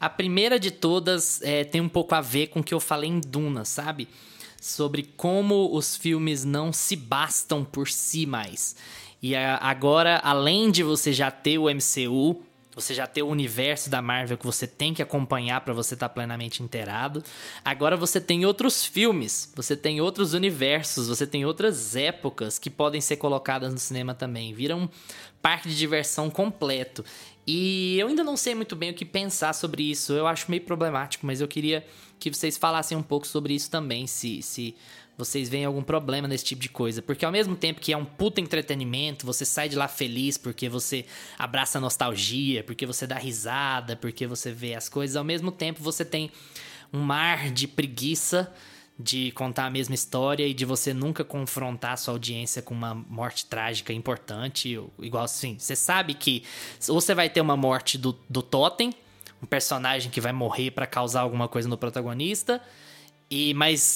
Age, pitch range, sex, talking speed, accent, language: 20-39, 125-160 Hz, male, 185 wpm, Brazilian, Portuguese